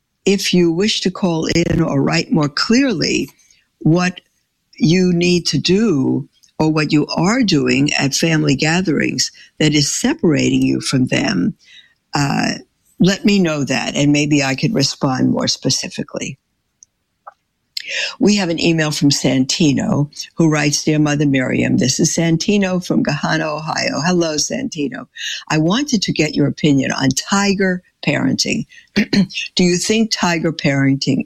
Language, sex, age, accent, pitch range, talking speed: English, female, 60-79, American, 145-180 Hz, 140 wpm